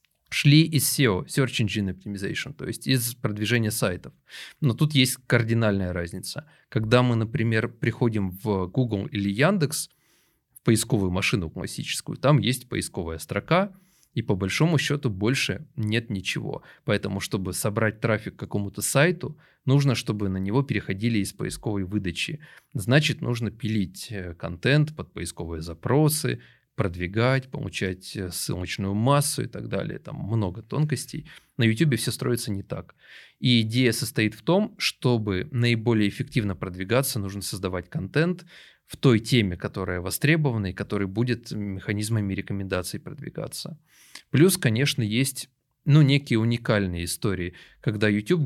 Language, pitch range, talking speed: Russian, 100-135 Hz, 135 wpm